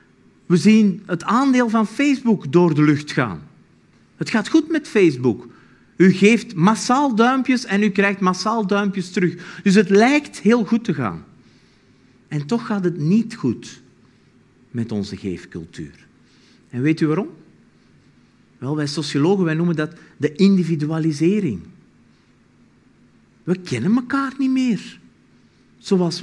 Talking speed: 135 wpm